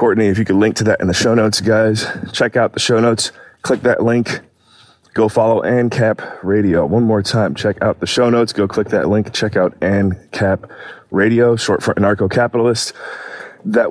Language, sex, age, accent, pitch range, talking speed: English, male, 20-39, American, 100-110 Hz, 195 wpm